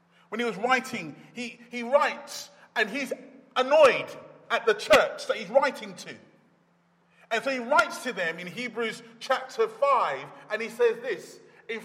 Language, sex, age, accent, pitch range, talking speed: English, male, 40-59, British, 240-320 Hz, 160 wpm